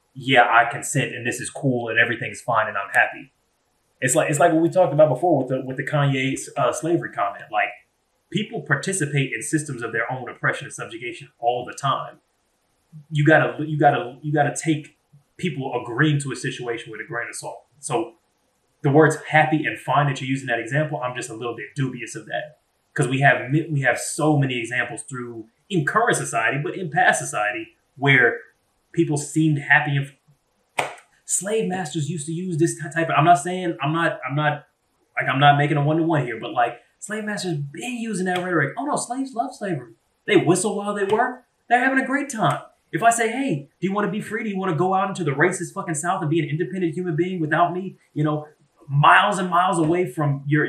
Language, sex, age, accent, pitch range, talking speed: English, male, 20-39, American, 140-175 Hz, 220 wpm